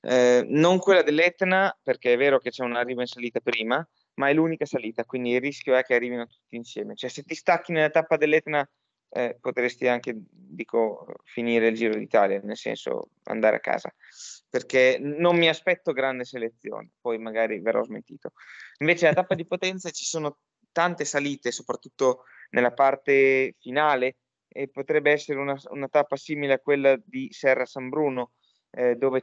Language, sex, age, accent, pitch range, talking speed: Italian, male, 20-39, native, 120-150 Hz, 170 wpm